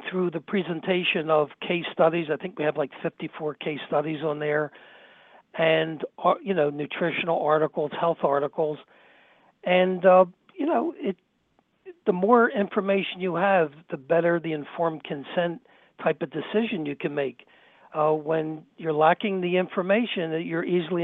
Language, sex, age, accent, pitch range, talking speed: English, male, 60-79, American, 155-185 Hz, 150 wpm